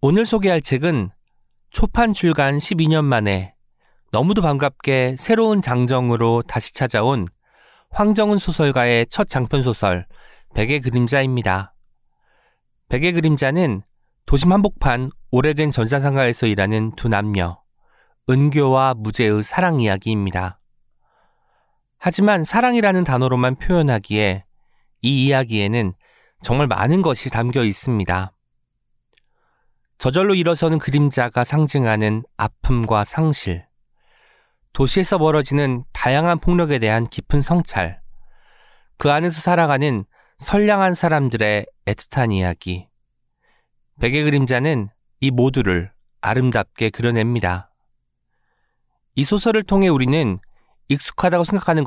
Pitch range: 110-160 Hz